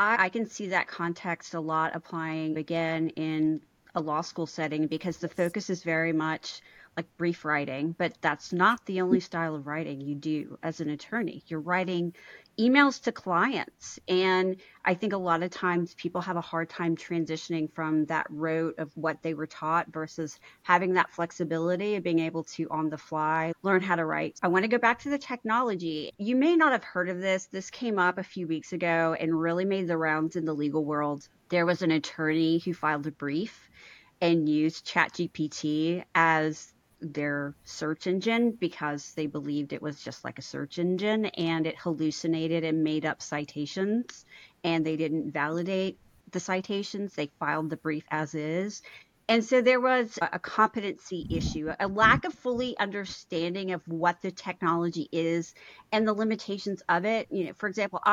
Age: 30-49